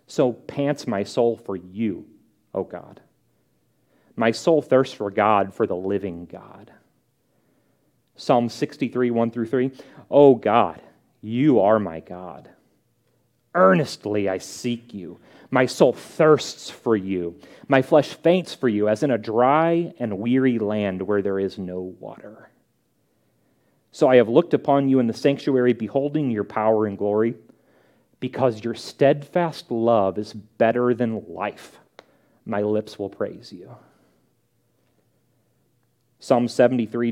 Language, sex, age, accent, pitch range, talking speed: English, male, 30-49, American, 105-130 Hz, 135 wpm